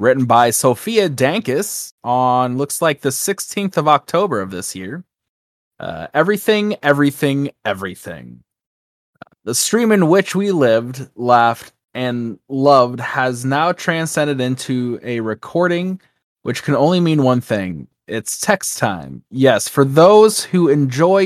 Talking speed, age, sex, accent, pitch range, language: 135 wpm, 20-39, male, American, 115-155 Hz, English